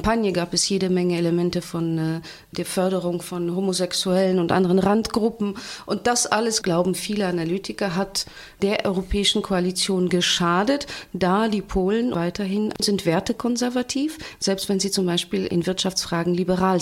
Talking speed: 145 wpm